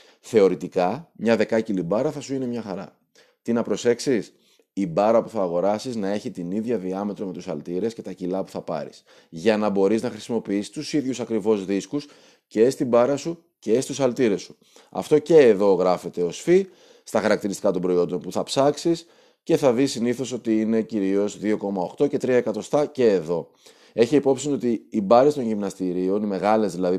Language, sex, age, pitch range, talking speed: Greek, male, 30-49, 95-130 Hz, 185 wpm